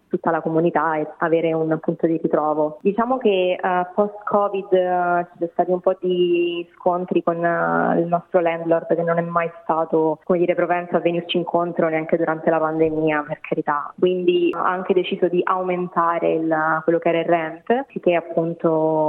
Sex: female